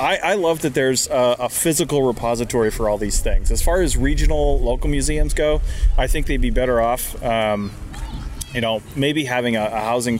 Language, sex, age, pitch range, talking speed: English, male, 30-49, 110-130 Hz, 200 wpm